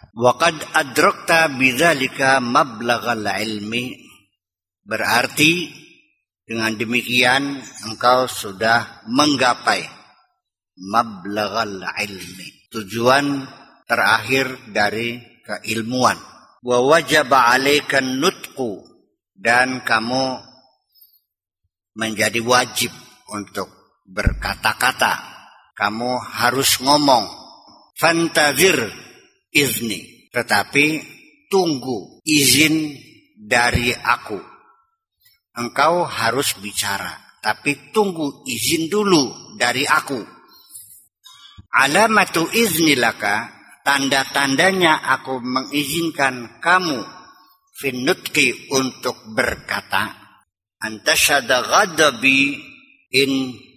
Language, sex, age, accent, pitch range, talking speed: Indonesian, male, 50-69, native, 115-155 Hz, 60 wpm